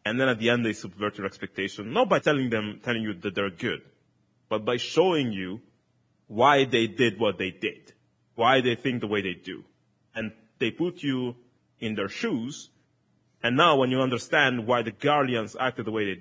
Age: 30-49